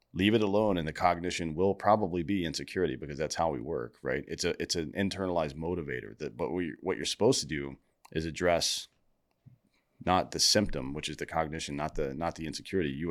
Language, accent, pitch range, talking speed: English, American, 75-95 Hz, 205 wpm